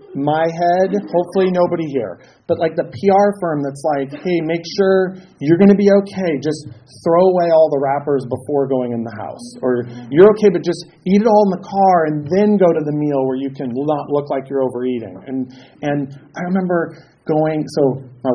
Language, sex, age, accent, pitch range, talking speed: English, male, 30-49, American, 135-185 Hz, 205 wpm